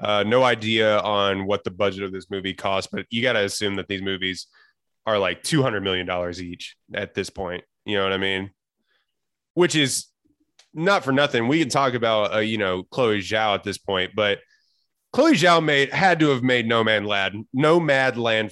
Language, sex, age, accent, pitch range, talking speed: English, male, 20-39, American, 105-135 Hz, 205 wpm